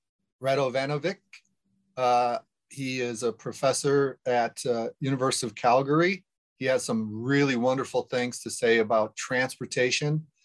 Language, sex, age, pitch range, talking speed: English, male, 30-49, 120-145 Hz, 115 wpm